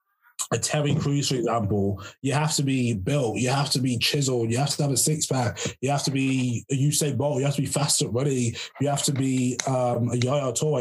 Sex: male